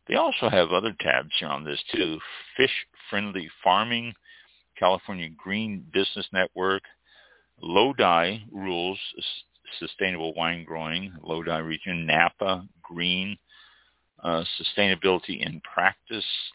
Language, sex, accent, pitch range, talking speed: English, male, American, 80-95 Hz, 105 wpm